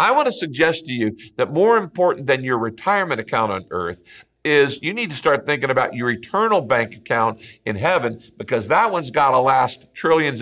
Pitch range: 115-170 Hz